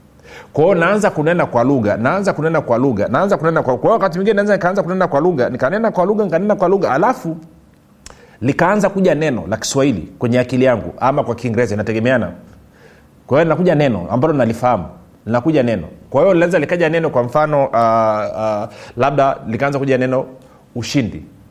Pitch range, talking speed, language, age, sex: 115-160 Hz, 160 wpm, Swahili, 40-59, male